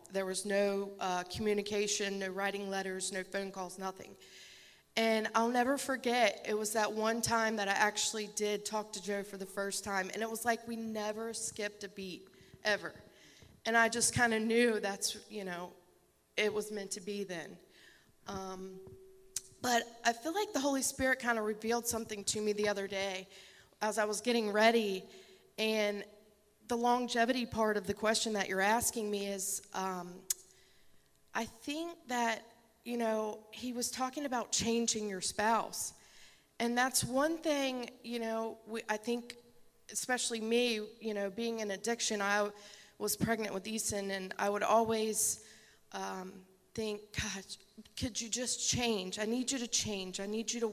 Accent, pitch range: American, 200-230 Hz